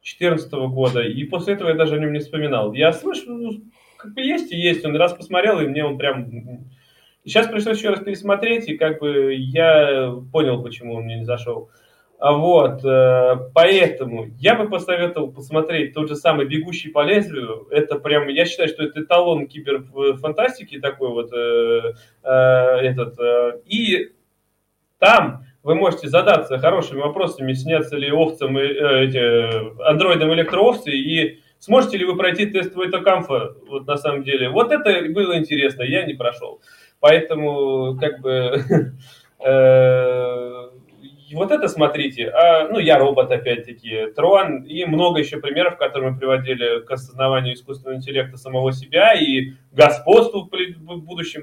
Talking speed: 145 wpm